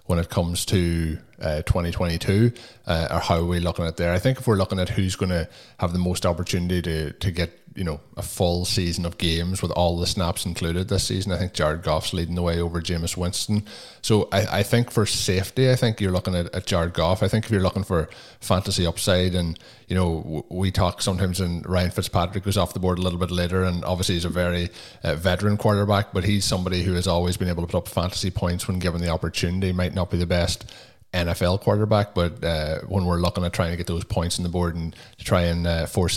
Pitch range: 85-100 Hz